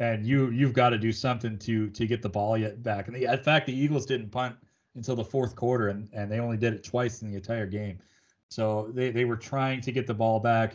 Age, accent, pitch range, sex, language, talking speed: 30-49, American, 115-130 Hz, male, English, 260 wpm